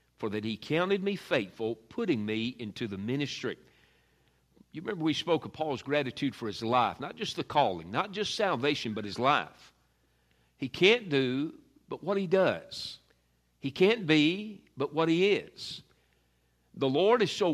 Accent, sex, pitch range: American, male, 105-150 Hz